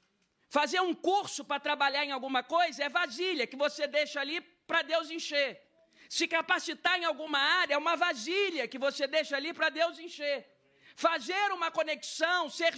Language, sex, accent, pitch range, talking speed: Portuguese, male, Brazilian, 235-330 Hz, 170 wpm